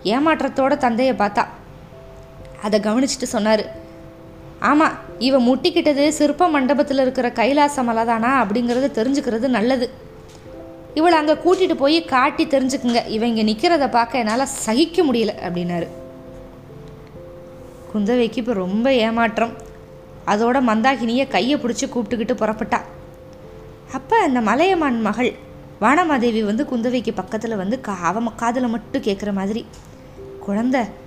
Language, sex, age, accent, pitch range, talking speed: Tamil, female, 20-39, native, 215-275 Hz, 110 wpm